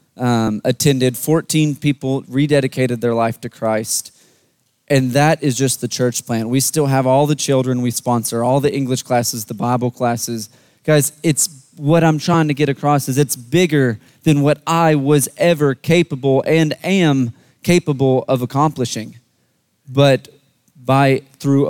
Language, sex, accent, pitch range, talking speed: English, male, American, 125-145 Hz, 155 wpm